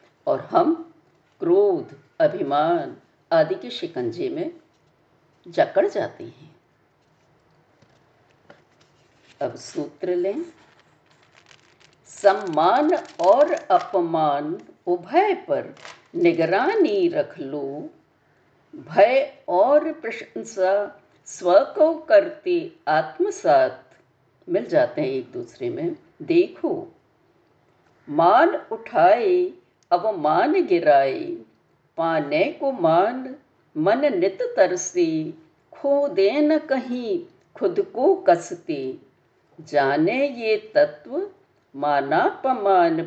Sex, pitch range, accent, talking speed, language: female, 215-345 Hz, native, 80 wpm, Hindi